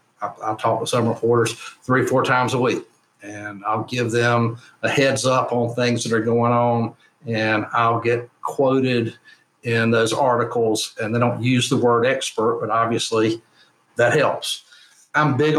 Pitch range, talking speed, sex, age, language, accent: 115-135 Hz, 170 wpm, male, 50-69, English, American